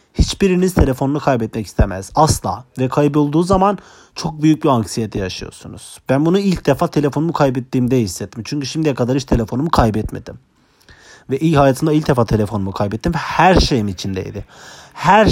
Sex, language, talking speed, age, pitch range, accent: male, Turkish, 145 wpm, 40-59, 120-170 Hz, native